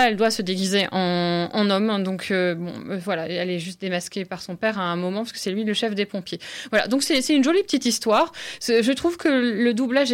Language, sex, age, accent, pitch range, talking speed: French, female, 20-39, French, 200-265 Hz, 265 wpm